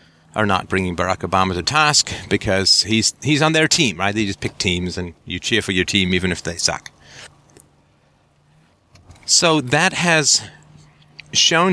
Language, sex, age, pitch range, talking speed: English, male, 40-59, 95-130 Hz, 165 wpm